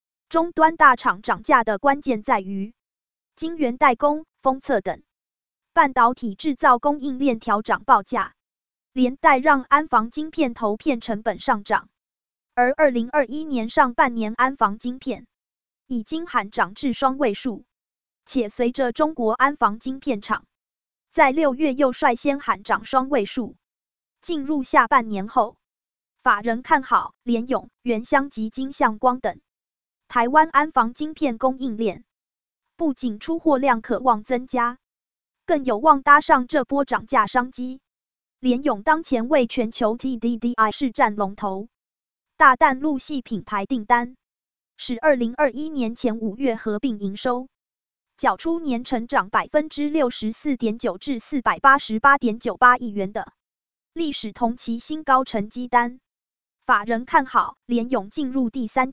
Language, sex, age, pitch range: Chinese, female, 20-39, 230-285 Hz